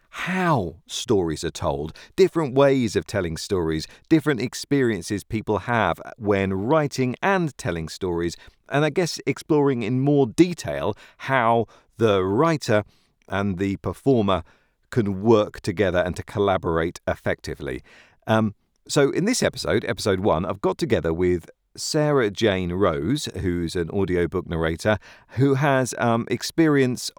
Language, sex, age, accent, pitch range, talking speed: English, male, 40-59, British, 90-130 Hz, 130 wpm